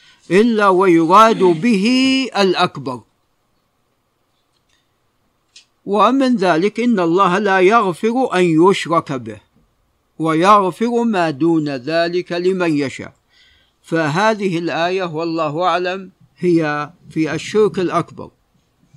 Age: 50-69